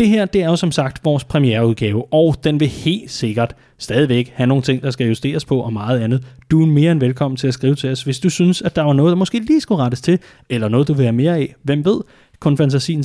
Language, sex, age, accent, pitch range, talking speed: Danish, male, 30-49, native, 130-160 Hz, 270 wpm